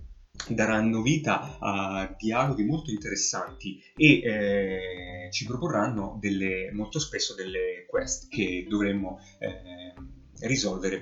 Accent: native